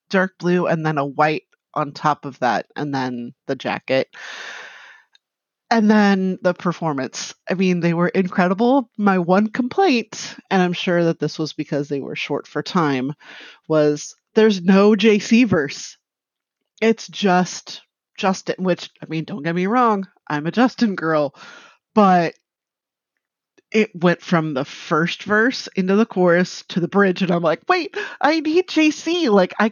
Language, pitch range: English, 155-210 Hz